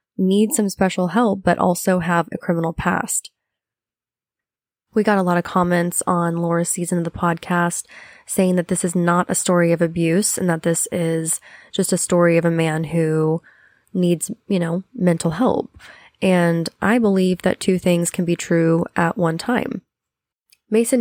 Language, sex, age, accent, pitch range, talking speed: English, female, 20-39, American, 170-190 Hz, 170 wpm